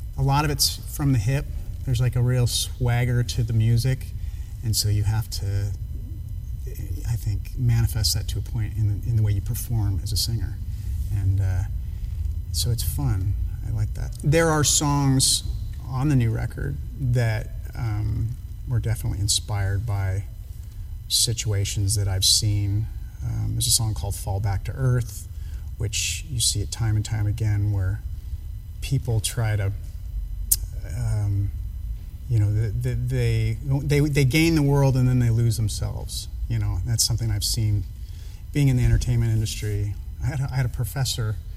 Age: 30-49